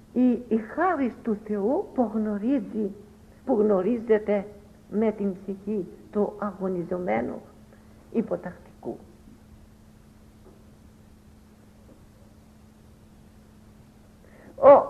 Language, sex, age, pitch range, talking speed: English, female, 60-79, 195-255 Hz, 60 wpm